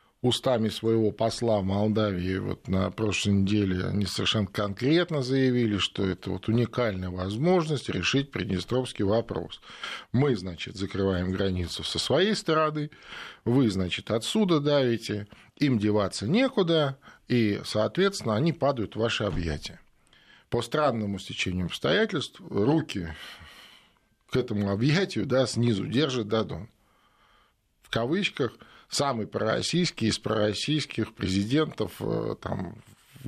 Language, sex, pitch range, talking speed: Russian, male, 100-130 Hz, 115 wpm